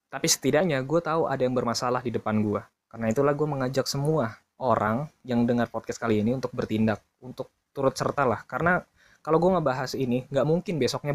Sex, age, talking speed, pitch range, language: male, 20-39, 190 wpm, 120-145 Hz, Indonesian